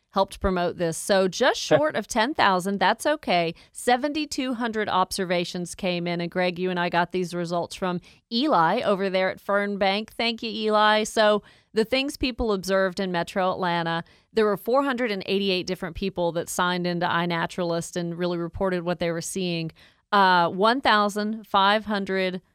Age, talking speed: 40-59, 150 wpm